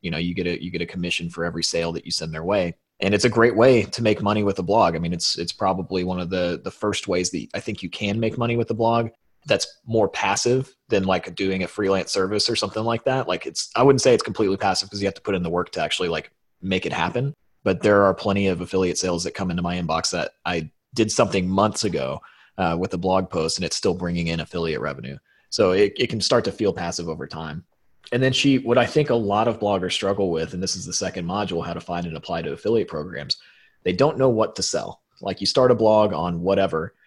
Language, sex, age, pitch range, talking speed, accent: English, male, 30-49, 90-110 Hz, 265 wpm, American